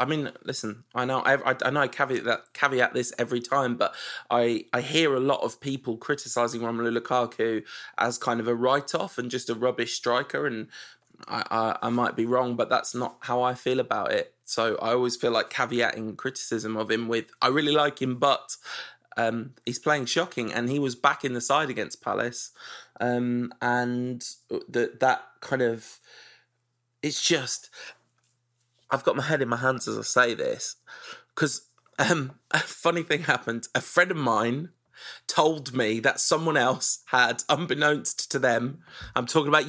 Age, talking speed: 20-39, 180 wpm